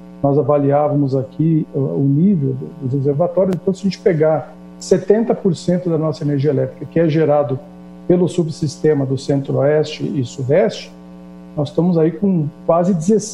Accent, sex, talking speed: Brazilian, male, 140 wpm